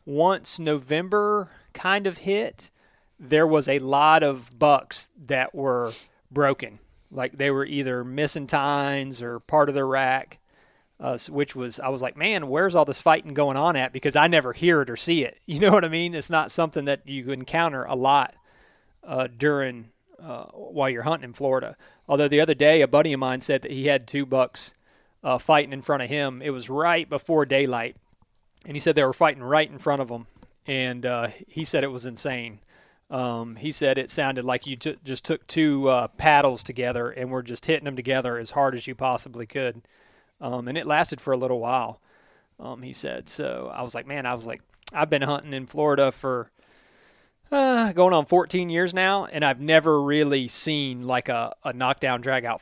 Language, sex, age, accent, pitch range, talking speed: English, male, 30-49, American, 125-155 Hz, 205 wpm